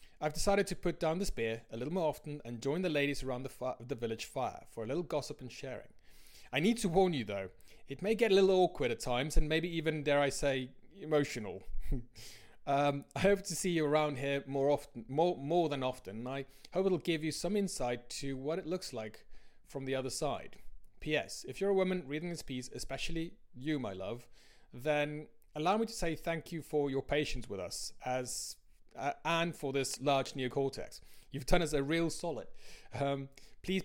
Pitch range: 130-165 Hz